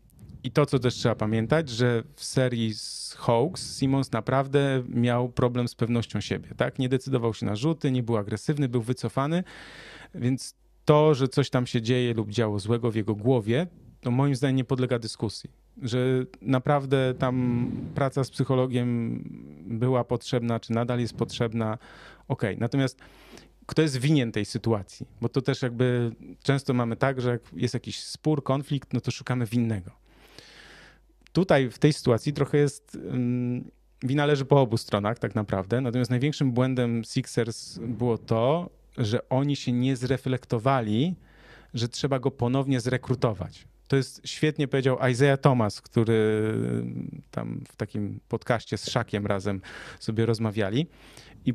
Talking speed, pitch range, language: 150 wpm, 115-135 Hz, Polish